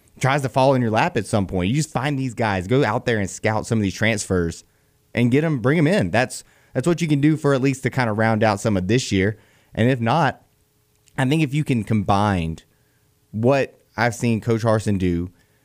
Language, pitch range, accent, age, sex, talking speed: English, 100-125 Hz, American, 30-49, male, 240 wpm